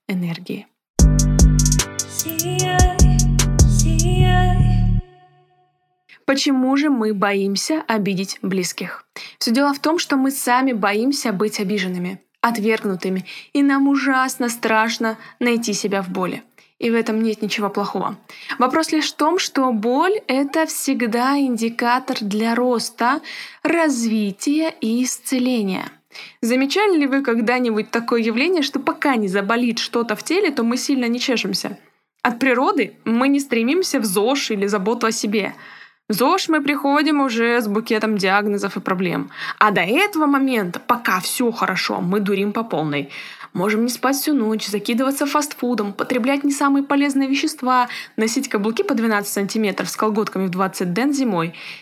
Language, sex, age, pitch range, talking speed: Russian, female, 20-39, 205-270 Hz, 140 wpm